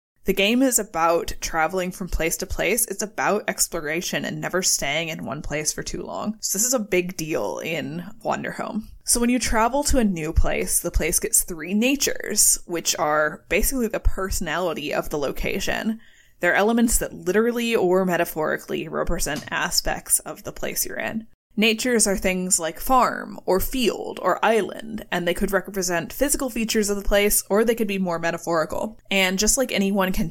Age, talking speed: 20-39, 180 wpm